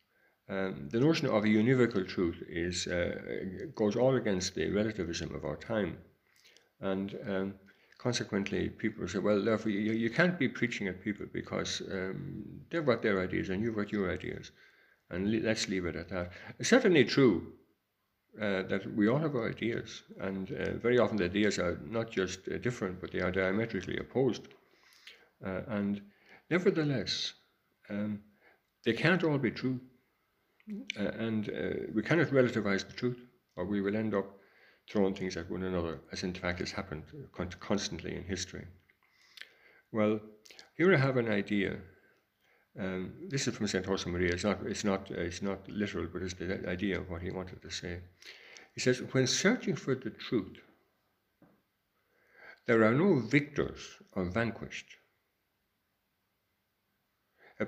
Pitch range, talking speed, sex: 95-115 Hz, 155 wpm, male